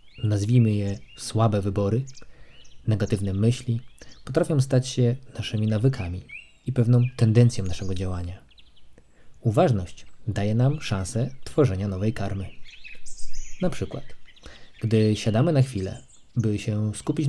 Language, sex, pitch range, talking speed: Polish, male, 100-125 Hz, 110 wpm